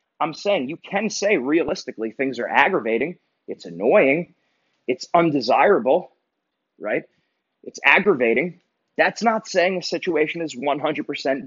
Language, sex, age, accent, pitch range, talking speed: English, male, 30-49, American, 140-195 Hz, 120 wpm